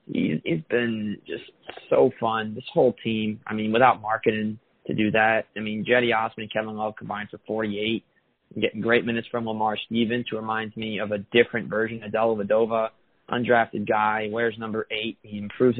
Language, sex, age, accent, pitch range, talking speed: English, male, 20-39, American, 105-115 Hz, 180 wpm